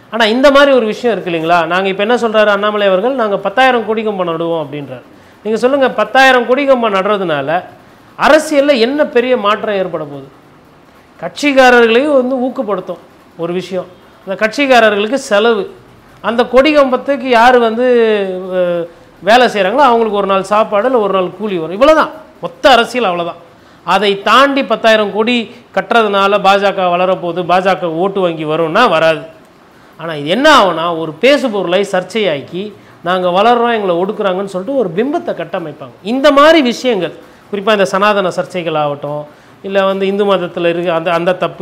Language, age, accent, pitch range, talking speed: Tamil, 30-49, native, 175-235 Hz, 145 wpm